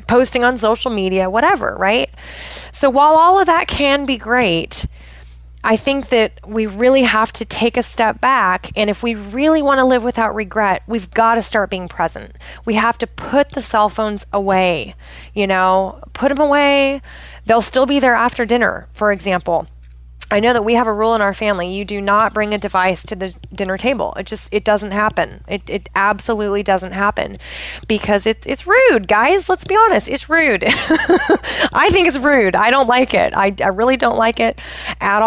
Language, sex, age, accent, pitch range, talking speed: English, female, 20-39, American, 190-245 Hz, 195 wpm